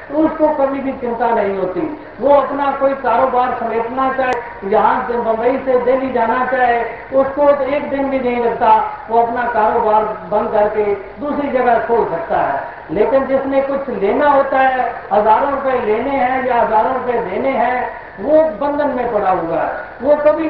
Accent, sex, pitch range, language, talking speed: native, female, 225-275 Hz, Hindi, 175 wpm